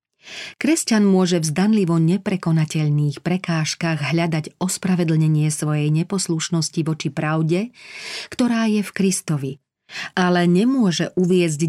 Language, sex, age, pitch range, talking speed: Slovak, female, 40-59, 155-185 Hz, 100 wpm